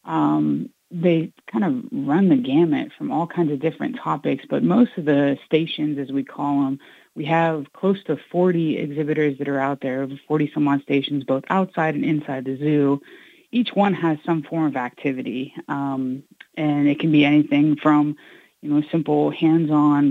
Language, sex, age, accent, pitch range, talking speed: English, female, 30-49, American, 145-170 Hz, 175 wpm